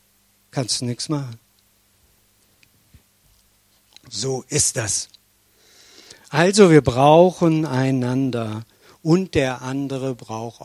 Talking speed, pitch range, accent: 85 wpm, 105-150 Hz, German